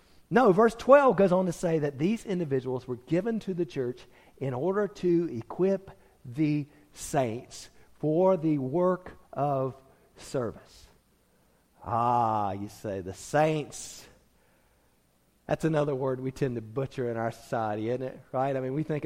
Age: 40-59